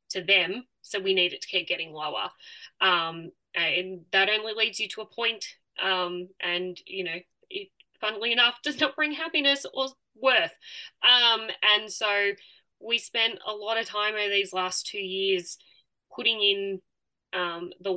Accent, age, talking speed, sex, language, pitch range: Australian, 10-29, 165 wpm, female, English, 180-215 Hz